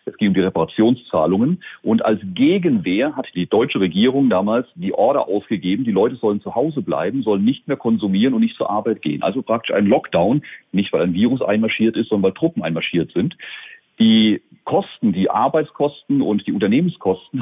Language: German